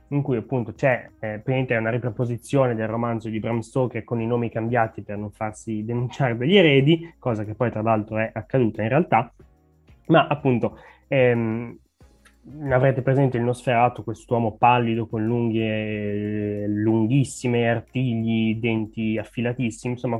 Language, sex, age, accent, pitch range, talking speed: Italian, male, 20-39, native, 110-130 Hz, 140 wpm